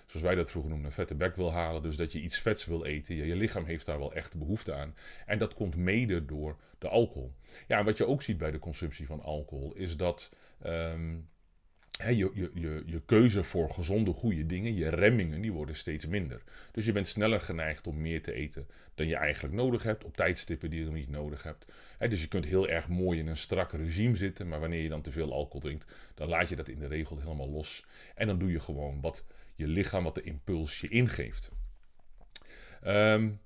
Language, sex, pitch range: Dutch, male, 80-105 Hz